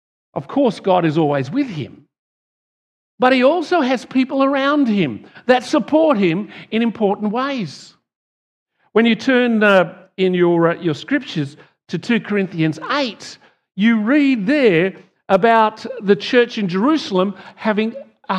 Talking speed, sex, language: 135 wpm, male, English